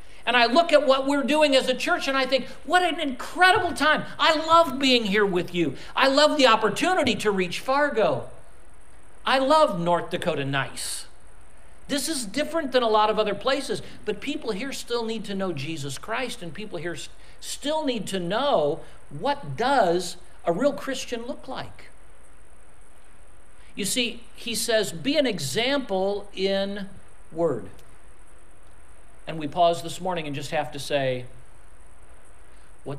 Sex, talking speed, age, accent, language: male, 160 wpm, 50-69, American, English